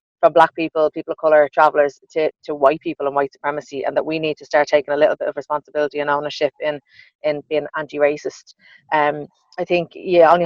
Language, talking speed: English, 210 wpm